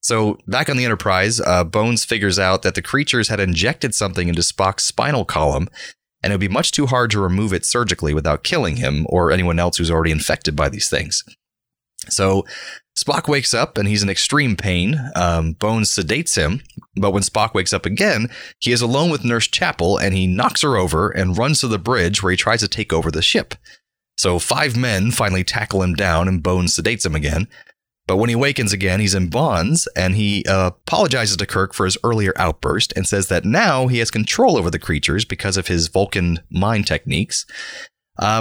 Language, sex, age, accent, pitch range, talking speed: English, male, 30-49, American, 90-115 Hz, 205 wpm